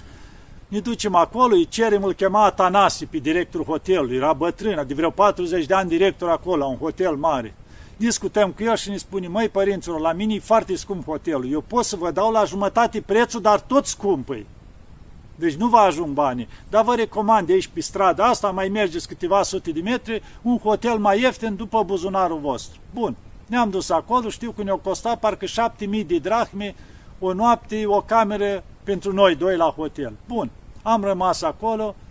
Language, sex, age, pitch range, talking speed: Romanian, male, 50-69, 170-225 Hz, 190 wpm